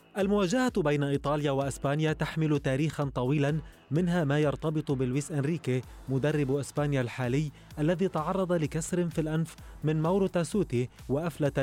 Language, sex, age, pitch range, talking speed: Arabic, male, 30-49, 130-155 Hz, 125 wpm